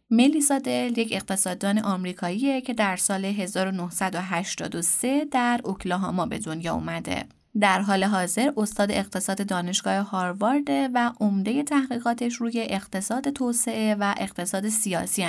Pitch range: 190-230 Hz